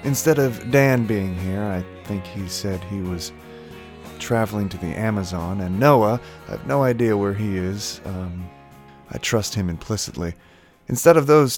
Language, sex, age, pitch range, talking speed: English, male, 30-49, 85-120 Hz, 165 wpm